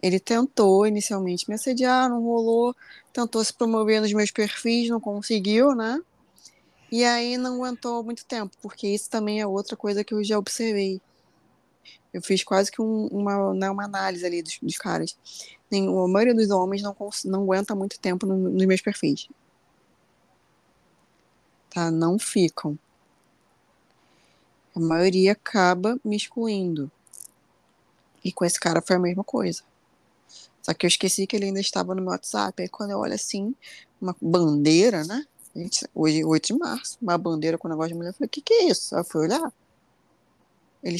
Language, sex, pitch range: Portuguese, female, 175-220 Hz